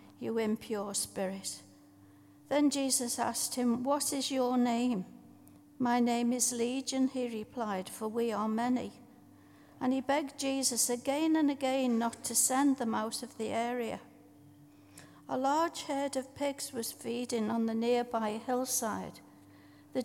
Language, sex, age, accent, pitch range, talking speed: English, female, 60-79, British, 220-265 Hz, 145 wpm